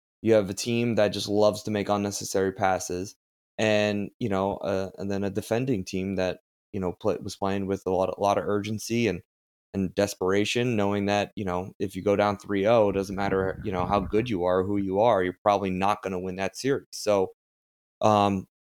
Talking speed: 215 wpm